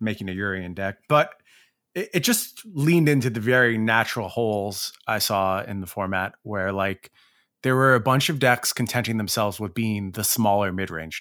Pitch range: 105-135 Hz